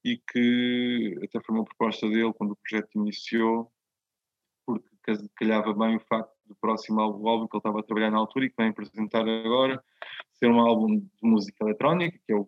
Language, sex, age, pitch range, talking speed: Portuguese, male, 20-39, 110-135 Hz, 200 wpm